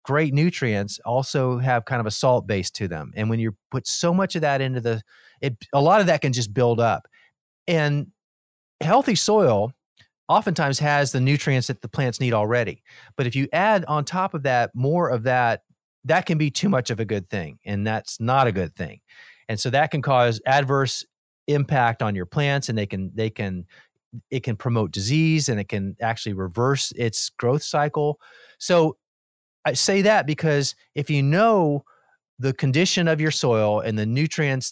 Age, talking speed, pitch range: 30-49, 190 wpm, 115-165 Hz